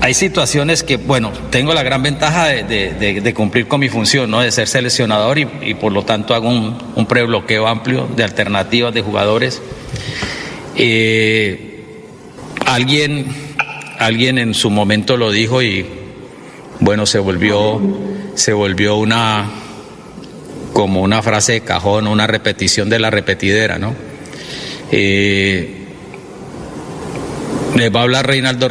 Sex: male